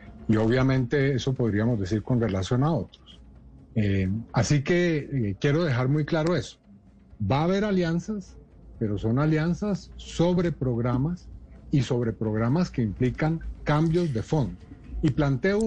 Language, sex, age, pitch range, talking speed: Spanish, male, 40-59, 115-165 Hz, 140 wpm